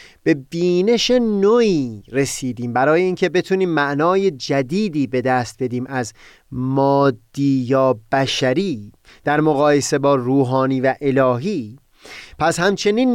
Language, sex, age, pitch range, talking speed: Persian, male, 30-49, 130-185 Hz, 110 wpm